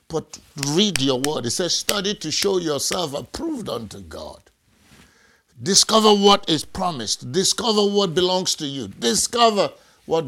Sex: male